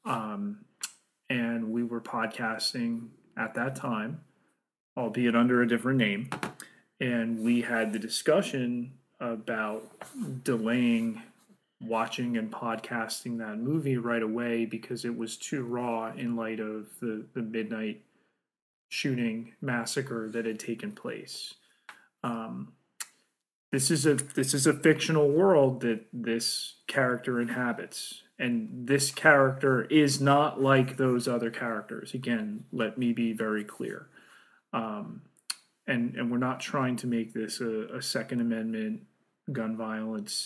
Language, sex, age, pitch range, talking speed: English, male, 30-49, 115-140 Hz, 130 wpm